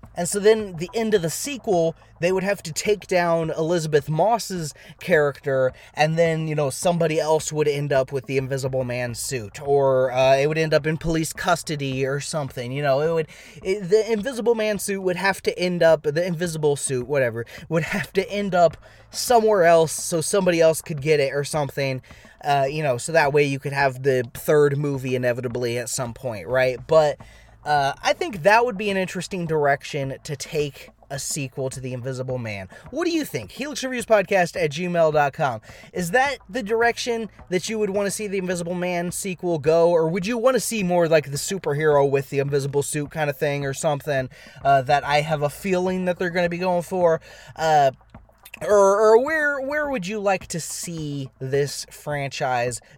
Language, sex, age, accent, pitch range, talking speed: English, male, 20-39, American, 140-185 Hz, 200 wpm